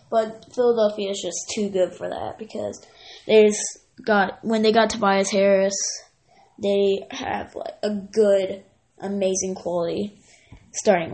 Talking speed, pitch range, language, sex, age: 135 wpm, 195-230 Hz, English, female, 10-29